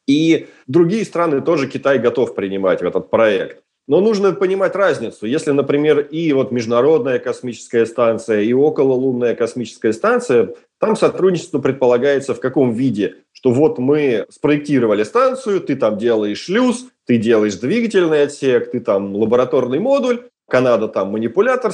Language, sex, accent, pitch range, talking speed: Russian, male, native, 125-205 Hz, 140 wpm